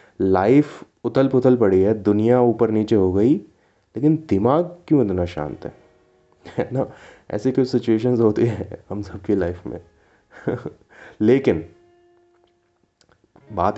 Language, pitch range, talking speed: Hindi, 95-135 Hz, 120 wpm